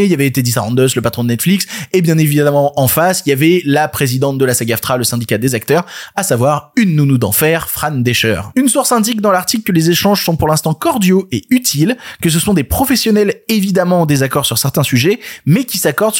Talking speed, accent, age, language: 225 wpm, French, 20-39, French